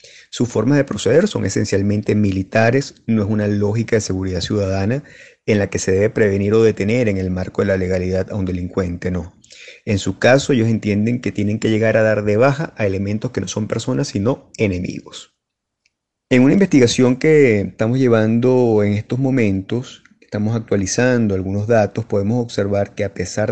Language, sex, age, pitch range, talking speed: Spanish, male, 30-49, 100-125 Hz, 180 wpm